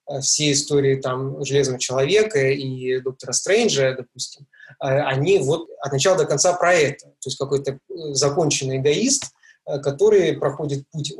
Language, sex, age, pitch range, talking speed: Russian, male, 20-39, 135-195 Hz, 130 wpm